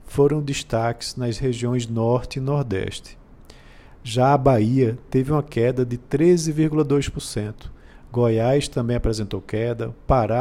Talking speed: 115 wpm